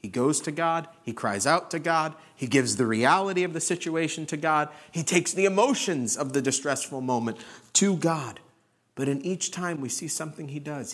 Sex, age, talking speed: male, 40-59, 205 wpm